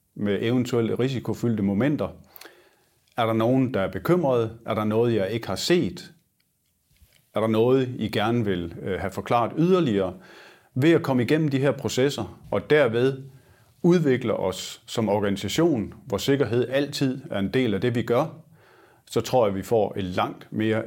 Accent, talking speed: native, 165 wpm